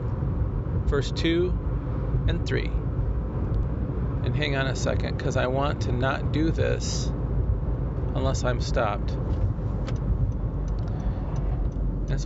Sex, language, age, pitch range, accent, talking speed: male, English, 40-59, 125-155 Hz, American, 100 wpm